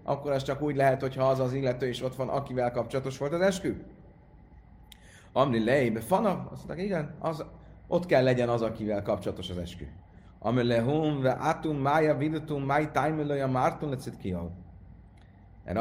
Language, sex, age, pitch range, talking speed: Hungarian, male, 30-49, 95-130 Hz, 165 wpm